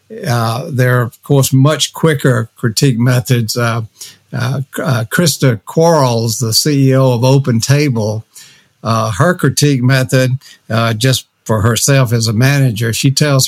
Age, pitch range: 60-79, 115-140 Hz